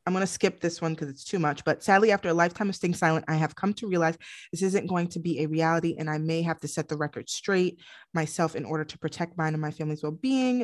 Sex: female